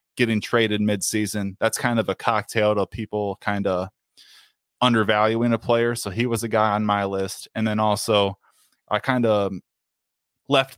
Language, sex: English, male